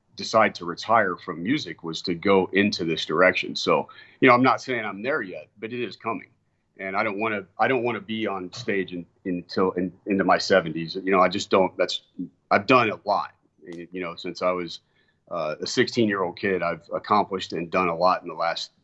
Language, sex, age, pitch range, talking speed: English, male, 40-59, 90-120 Hz, 225 wpm